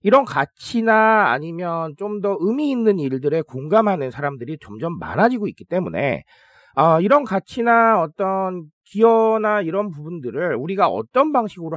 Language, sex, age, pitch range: Korean, male, 40-59, 170-240 Hz